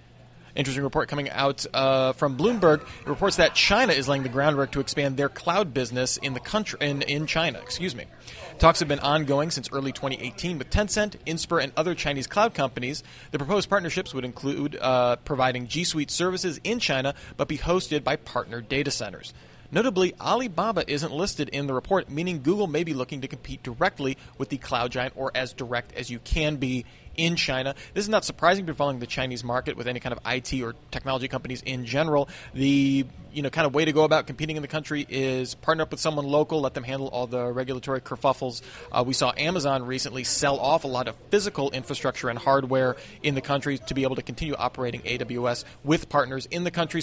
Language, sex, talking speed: English, male, 210 wpm